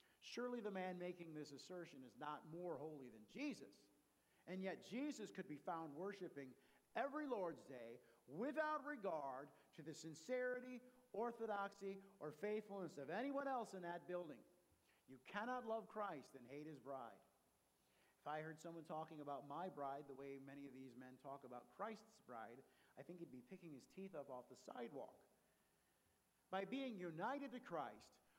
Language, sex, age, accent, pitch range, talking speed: English, male, 50-69, American, 150-245 Hz, 165 wpm